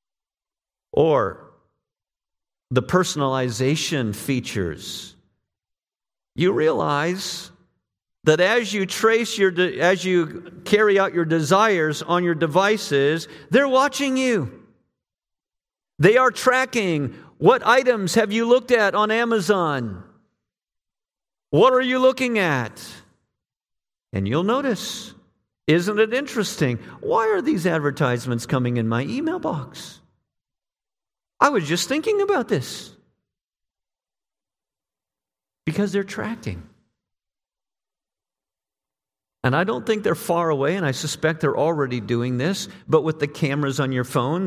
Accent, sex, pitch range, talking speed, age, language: American, male, 135-215 Hz, 115 wpm, 50-69, English